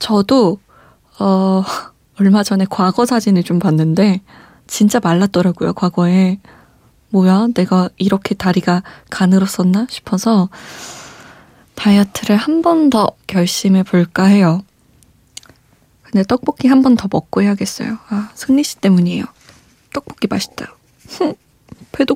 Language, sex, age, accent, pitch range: Korean, female, 20-39, native, 185-230 Hz